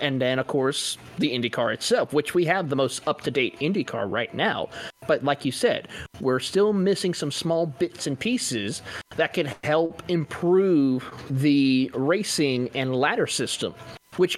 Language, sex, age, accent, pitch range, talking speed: English, male, 30-49, American, 130-165 Hz, 160 wpm